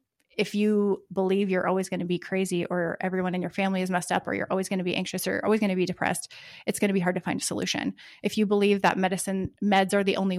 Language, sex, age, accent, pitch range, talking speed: English, female, 30-49, American, 185-220 Hz, 285 wpm